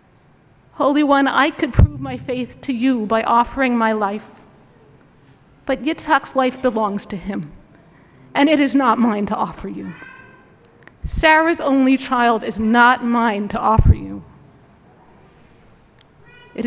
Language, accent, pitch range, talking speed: English, American, 230-285 Hz, 135 wpm